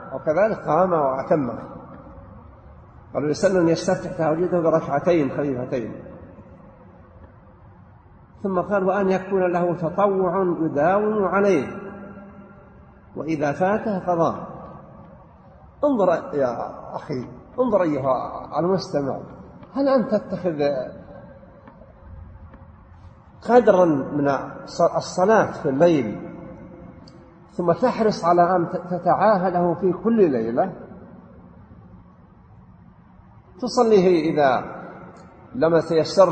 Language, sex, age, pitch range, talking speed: English, male, 50-69, 140-195 Hz, 80 wpm